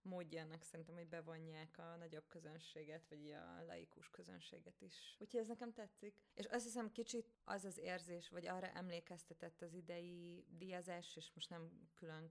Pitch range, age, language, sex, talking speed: 160-175 Hz, 20-39, Hungarian, female, 160 wpm